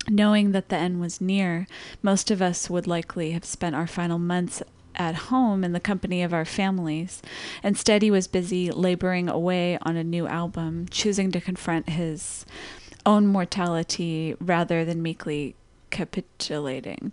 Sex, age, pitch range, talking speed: female, 30-49, 175-195 Hz, 155 wpm